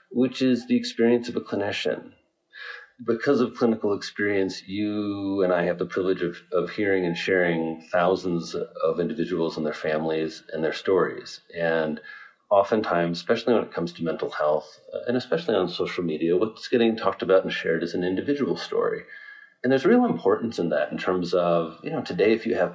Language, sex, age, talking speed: English, male, 40-59, 185 wpm